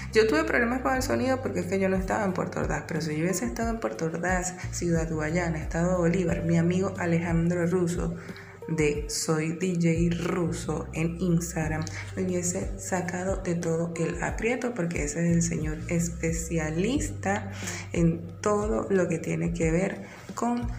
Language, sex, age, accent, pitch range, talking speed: Spanish, female, 20-39, Venezuelan, 150-180 Hz, 170 wpm